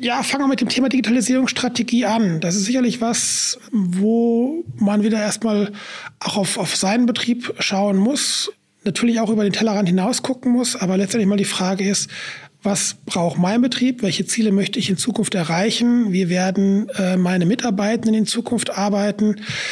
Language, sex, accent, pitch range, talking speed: German, male, German, 195-230 Hz, 170 wpm